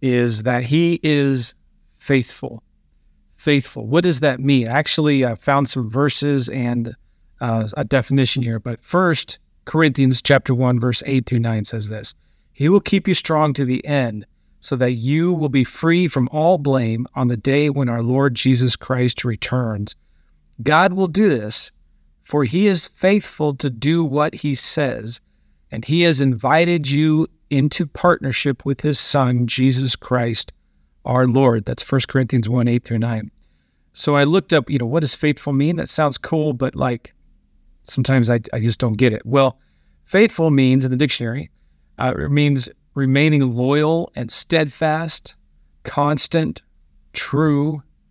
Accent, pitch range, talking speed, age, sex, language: American, 115-150 Hz, 155 wpm, 40-59, male, English